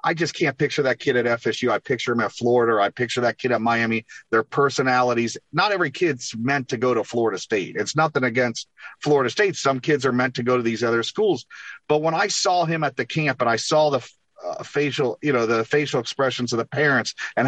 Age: 40-59